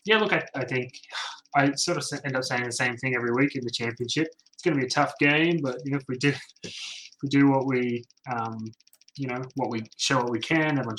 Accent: Australian